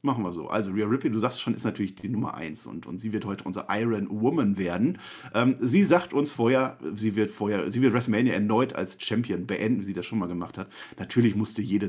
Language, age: German, 40-59